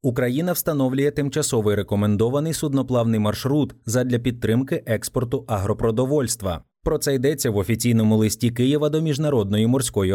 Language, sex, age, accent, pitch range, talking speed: Ukrainian, male, 20-39, native, 105-135 Hz, 120 wpm